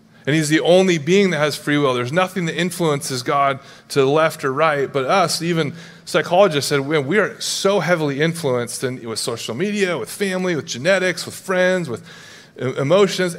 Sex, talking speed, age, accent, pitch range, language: male, 180 wpm, 30-49, American, 130-170 Hz, English